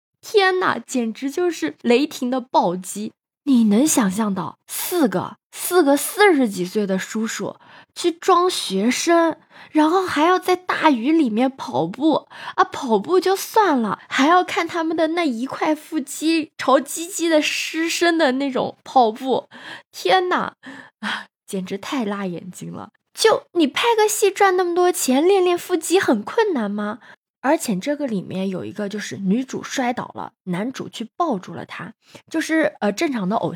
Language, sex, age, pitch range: Chinese, female, 20-39, 200-330 Hz